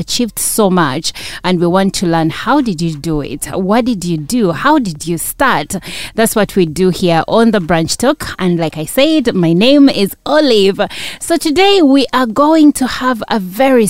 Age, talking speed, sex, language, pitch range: 30-49, 205 wpm, female, English, 165-215 Hz